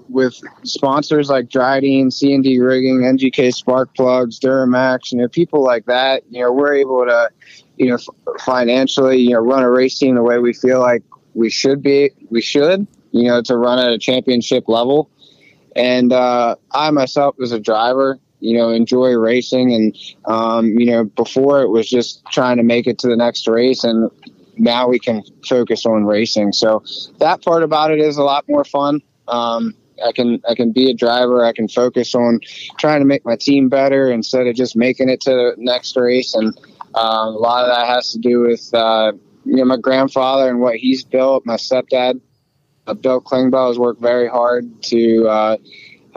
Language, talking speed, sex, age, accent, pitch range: English, 195 wpm, male, 20-39, American, 120-135 Hz